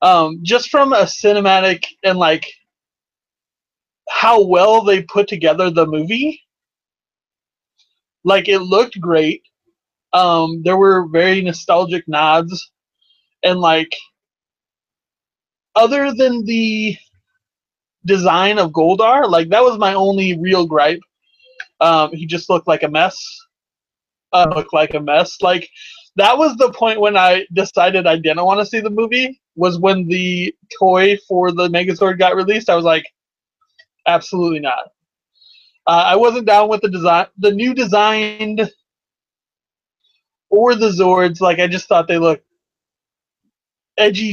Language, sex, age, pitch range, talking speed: English, male, 30-49, 170-215 Hz, 135 wpm